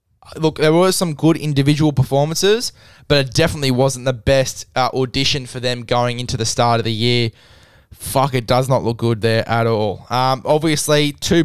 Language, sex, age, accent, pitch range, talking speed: English, male, 20-39, Australian, 125-140 Hz, 190 wpm